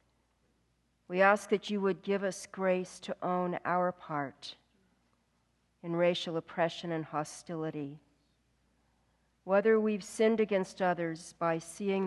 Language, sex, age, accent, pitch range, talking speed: English, female, 50-69, American, 145-190 Hz, 120 wpm